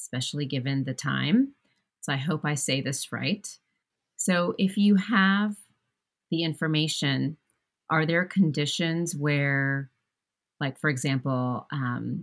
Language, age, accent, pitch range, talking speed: English, 30-49, American, 135-155 Hz, 125 wpm